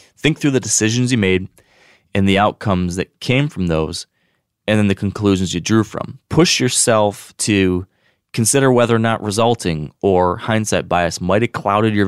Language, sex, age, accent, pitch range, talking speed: English, male, 20-39, American, 90-115 Hz, 175 wpm